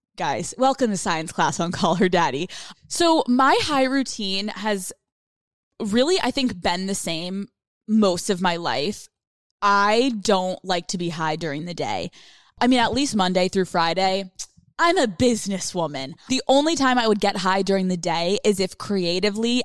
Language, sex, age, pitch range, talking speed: English, female, 20-39, 175-210 Hz, 170 wpm